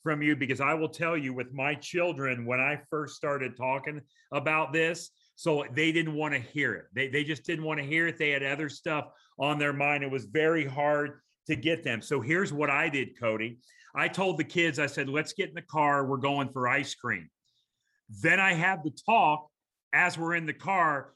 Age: 40-59